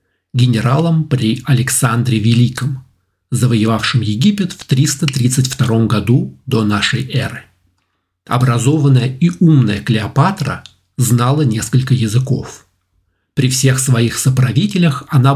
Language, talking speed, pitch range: Russian, 95 wpm, 115-140 Hz